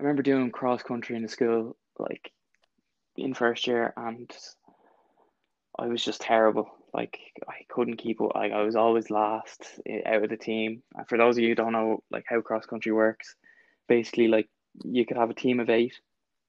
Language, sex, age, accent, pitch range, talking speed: English, male, 20-39, Irish, 110-120 Hz, 185 wpm